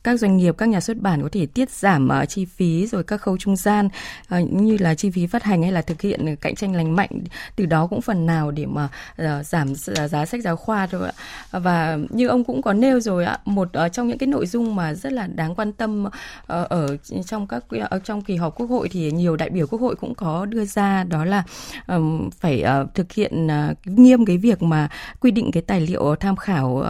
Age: 20-39